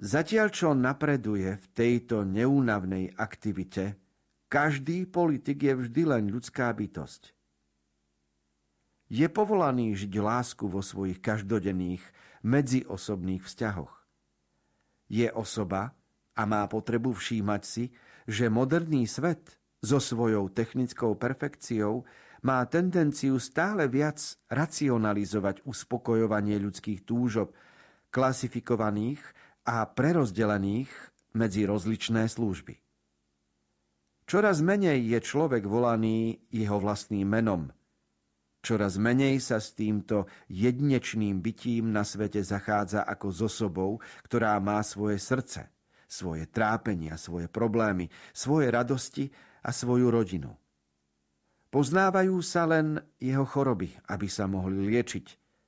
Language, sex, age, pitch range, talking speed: Slovak, male, 50-69, 100-130 Hz, 100 wpm